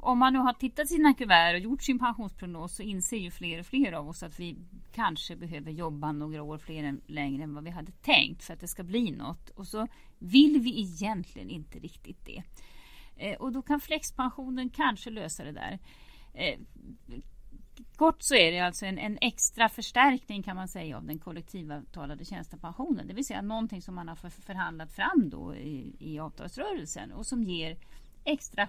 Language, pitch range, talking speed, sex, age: Swedish, 160-240 Hz, 185 wpm, female, 40-59